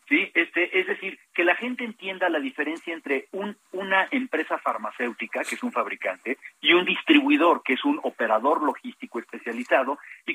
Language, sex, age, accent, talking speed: Spanish, male, 50-69, Mexican, 170 wpm